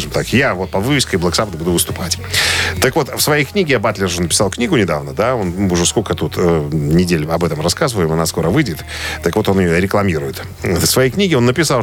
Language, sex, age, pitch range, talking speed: Russian, male, 40-59, 95-135 Hz, 215 wpm